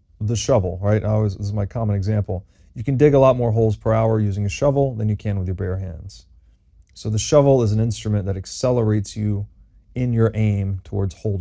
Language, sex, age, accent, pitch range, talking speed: English, male, 30-49, American, 95-115 Hz, 215 wpm